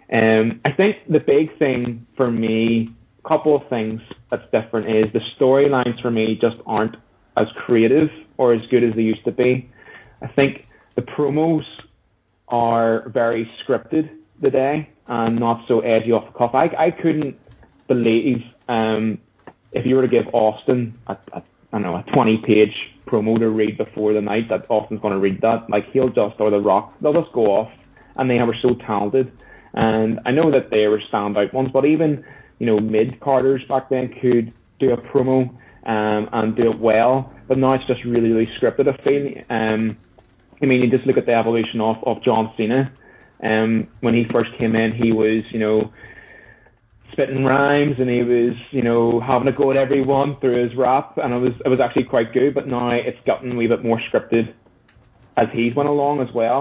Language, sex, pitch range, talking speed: English, male, 110-130 Hz, 195 wpm